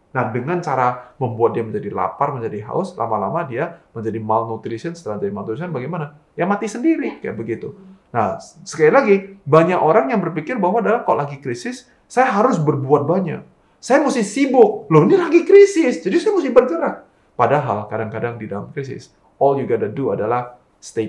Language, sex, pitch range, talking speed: Indonesian, male, 115-175 Hz, 170 wpm